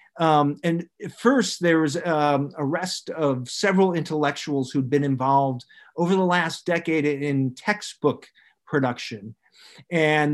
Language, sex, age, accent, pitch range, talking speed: English, male, 50-69, American, 130-165 Hz, 120 wpm